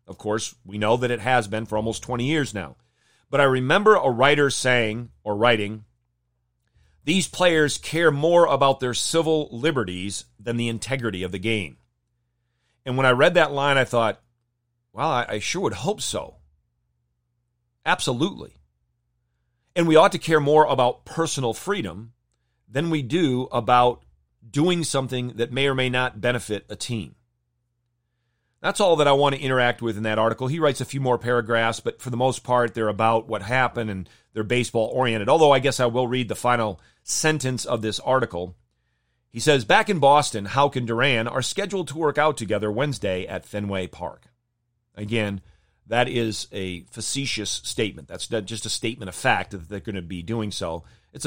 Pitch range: 100-130 Hz